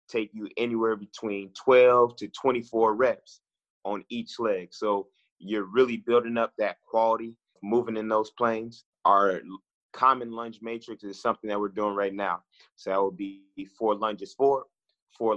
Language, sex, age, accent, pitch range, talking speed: English, male, 30-49, American, 105-120 Hz, 160 wpm